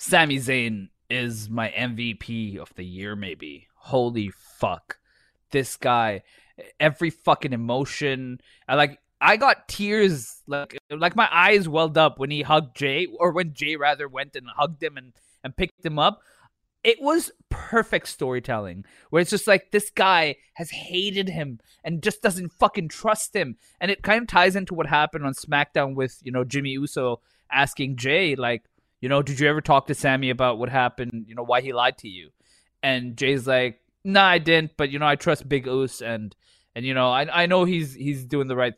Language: English